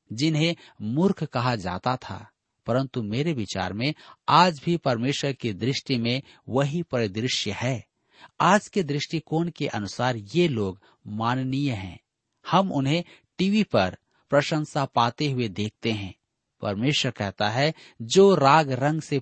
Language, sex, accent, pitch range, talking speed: Hindi, male, native, 115-155 Hz, 135 wpm